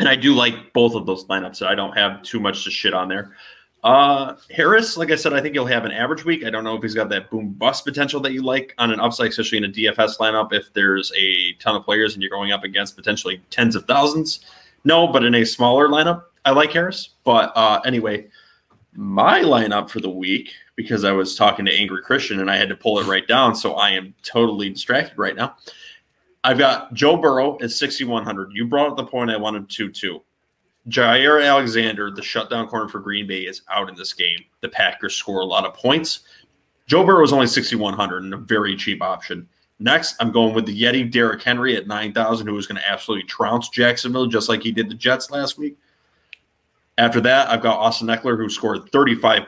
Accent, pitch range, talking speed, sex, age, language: American, 105-130 Hz, 220 wpm, male, 20-39, English